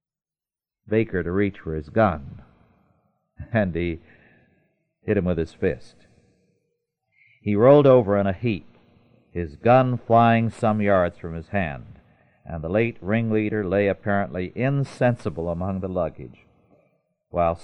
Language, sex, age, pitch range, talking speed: English, male, 50-69, 90-115 Hz, 130 wpm